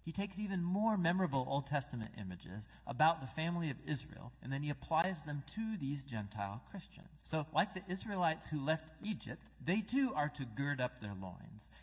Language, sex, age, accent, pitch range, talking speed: English, male, 40-59, American, 120-170 Hz, 190 wpm